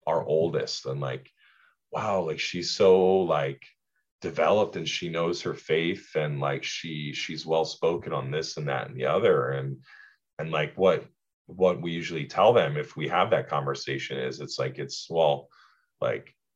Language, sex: English, male